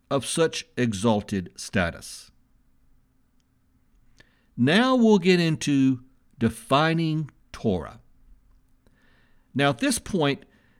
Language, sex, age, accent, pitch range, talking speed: English, male, 60-79, American, 110-160 Hz, 80 wpm